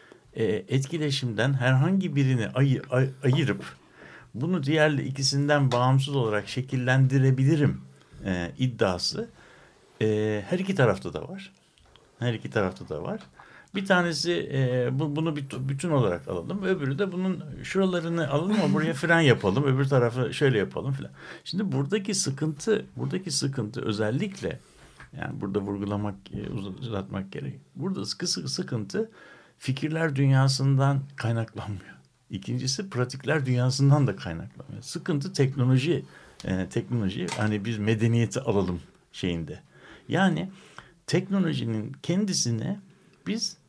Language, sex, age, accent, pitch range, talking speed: Turkish, male, 60-79, native, 120-160 Hz, 115 wpm